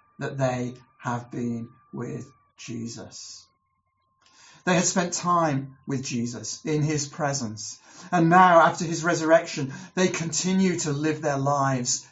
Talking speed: 130 wpm